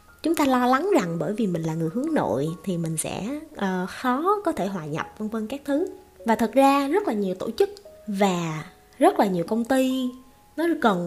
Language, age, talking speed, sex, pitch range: Vietnamese, 20-39, 220 wpm, female, 185-280 Hz